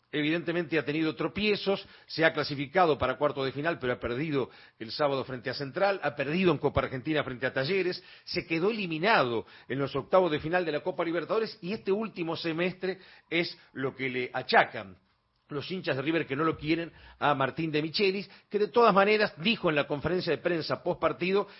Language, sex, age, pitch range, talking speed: Spanish, male, 40-59, 135-180 Hz, 200 wpm